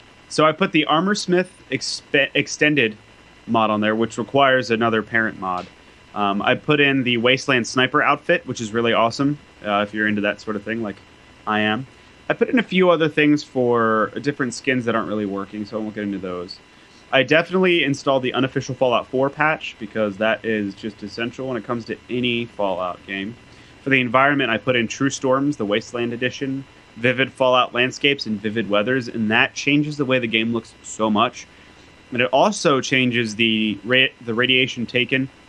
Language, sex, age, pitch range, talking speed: English, male, 30-49, 105-130 Hz, 195 wpm